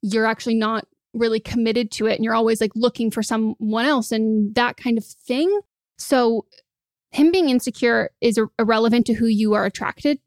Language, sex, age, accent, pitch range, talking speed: English, female, 20-39, American, 220-245 Hz, 180 wpm